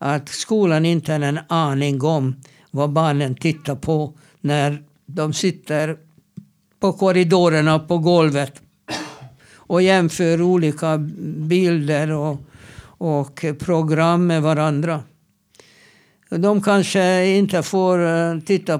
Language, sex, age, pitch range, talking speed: Swedish, male, 60-79, 150-180 Hz, 100 wpm